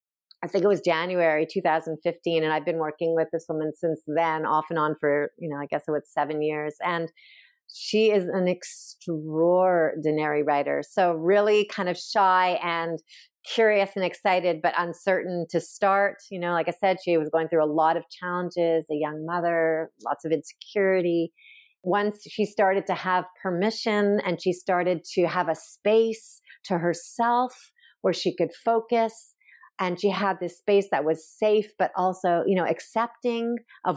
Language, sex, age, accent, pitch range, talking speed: English, female, 40-59, American, 160-195 Hz, 175 wpm